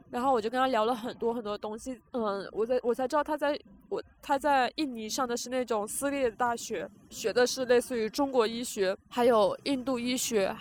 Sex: female